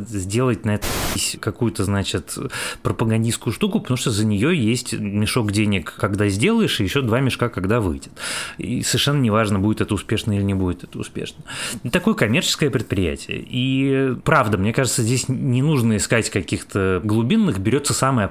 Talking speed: 155 wpm